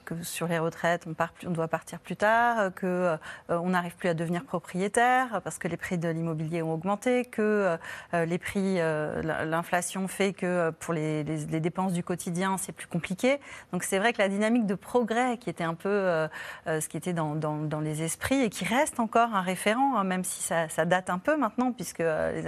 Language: French